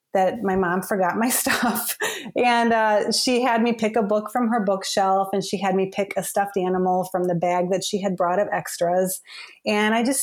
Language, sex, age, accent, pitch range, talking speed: English, female, 30-49, American, 190-230 Hz, 215 wpm